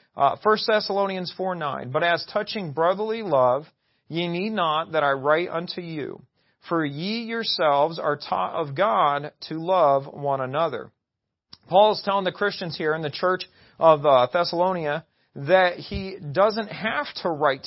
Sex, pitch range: male, 150-200 Hz